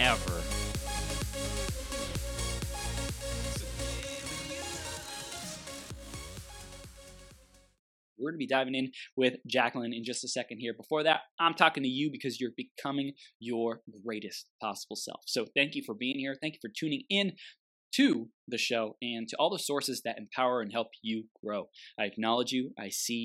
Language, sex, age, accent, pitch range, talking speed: English, male, 20-39, American, 125-190 Hz, 145 wpm